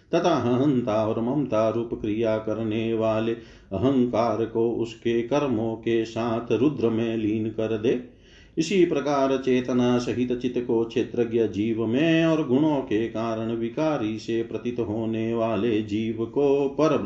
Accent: native